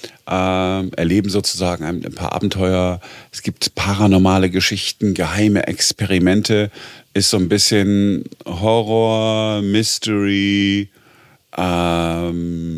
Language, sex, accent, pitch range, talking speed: German, male, German, 95-110 Hz, 85 wpm